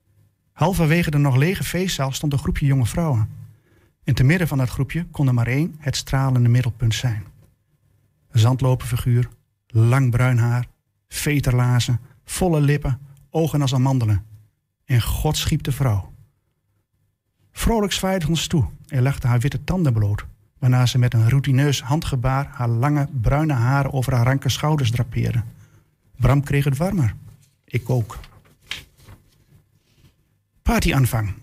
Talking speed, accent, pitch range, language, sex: 140 wpm, Dutch, 120-150 Hz, Dutch, male